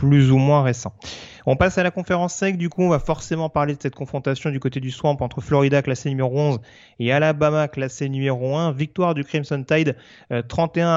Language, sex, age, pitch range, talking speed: French, male, 30-49, 130-160 Hz, 215 wpm